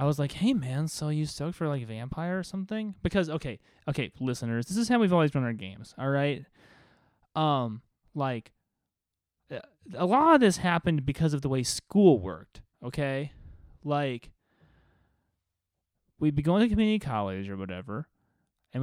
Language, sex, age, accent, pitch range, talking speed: English, male, 20-39, American, 115-185 Hz, 165 wpm